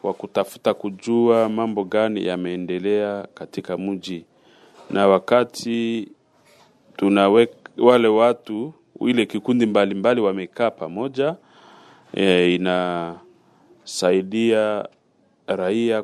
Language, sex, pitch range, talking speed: French, male, 95-115 Hz, 80 wpm